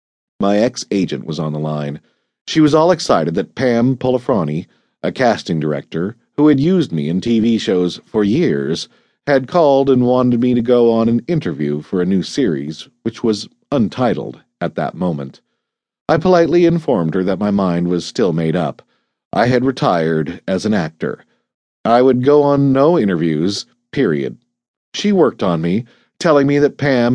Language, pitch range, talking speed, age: English, 85-130 Hz, 170 wpm, 40-59